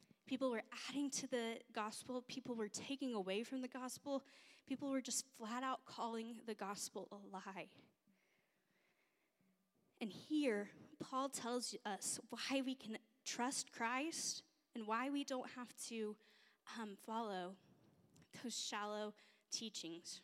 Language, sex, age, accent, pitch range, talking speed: English, female, 10-29, American, 205-260 Hz, 130 wpm